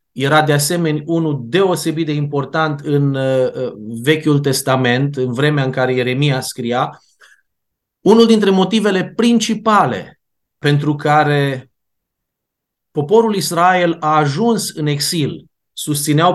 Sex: male